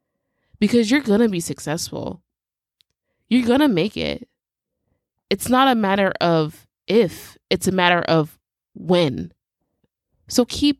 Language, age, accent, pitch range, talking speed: English, 20-39, American, 180-225 Hz, 135 wpm